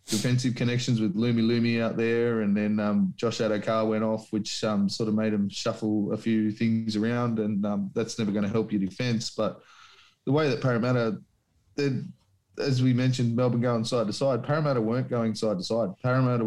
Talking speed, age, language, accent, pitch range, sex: 195 wpm, 20-39, English, Australian, 110-125 Hz, male